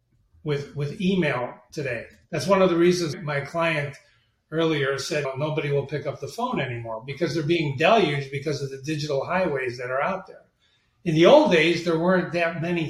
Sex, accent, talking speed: male, American, 195 wpm